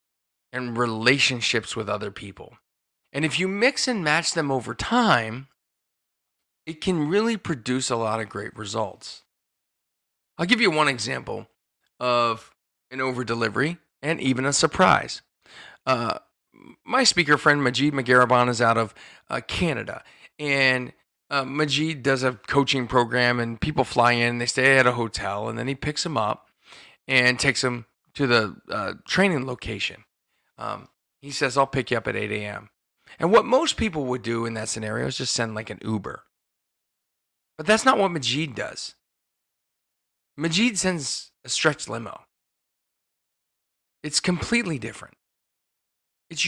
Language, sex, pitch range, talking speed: English, male, 110-155 Hz, 150 wpm